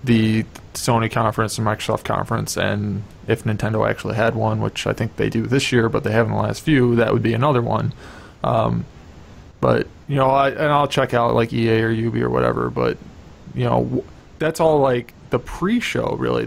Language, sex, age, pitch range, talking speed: English, male, 20-39, 110-130 Hz, 200 wpm